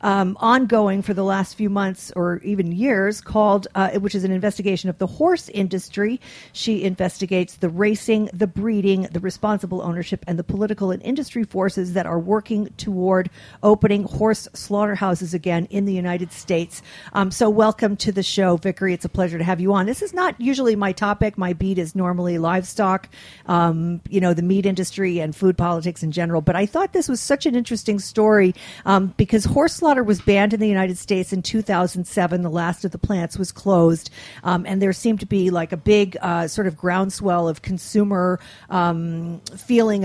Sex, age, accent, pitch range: female, 50-69, American, 180-210 Hz